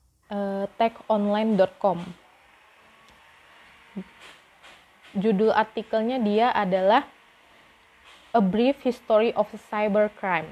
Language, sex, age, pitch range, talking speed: Indonesian, female, 20-39, 190-215 Hz, 55 wpm